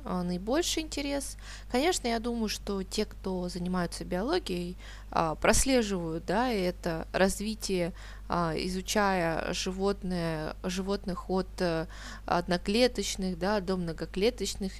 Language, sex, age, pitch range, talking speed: Russian, female, 20-39, 180-225 Hz, 75 wpm